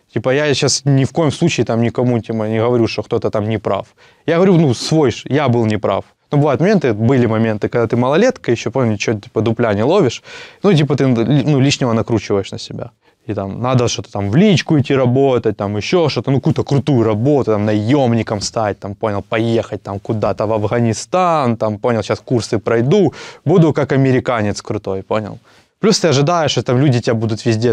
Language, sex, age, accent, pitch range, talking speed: Russian, male, 20-39, native, 110-145 Hz, 205 wpm